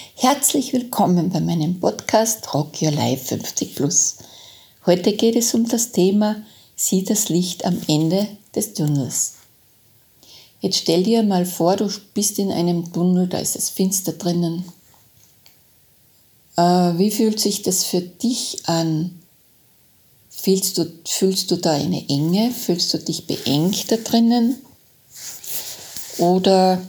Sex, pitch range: female, 165-205 Hz